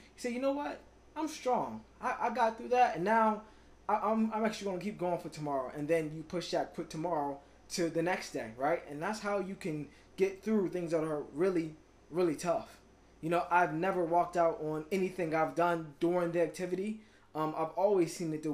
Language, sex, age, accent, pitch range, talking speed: English, male, 20-39, American, 155-190 Hz, 220 wpm